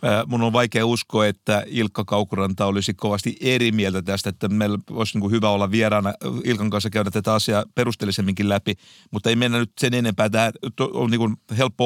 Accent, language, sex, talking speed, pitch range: native, Finnish, male, 170 wpm, 105-125 Hz